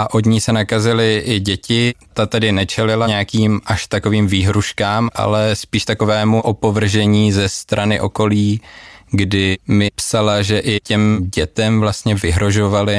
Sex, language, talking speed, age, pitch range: male, Czech, 140 wpm, 20-39, 95-105 Hz